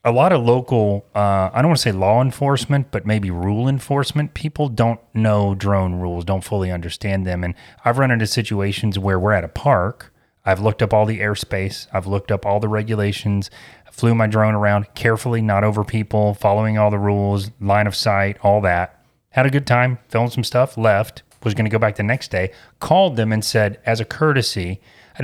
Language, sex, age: English, male, 30-49